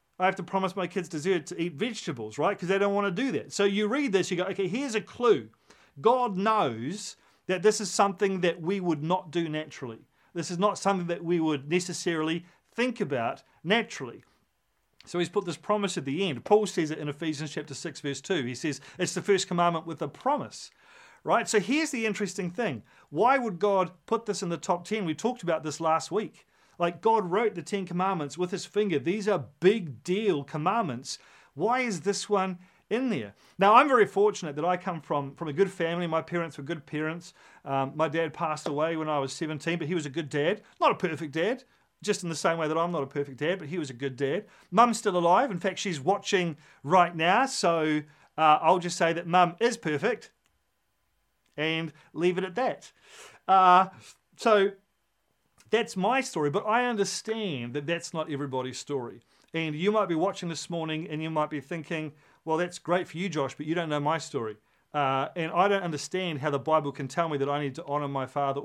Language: English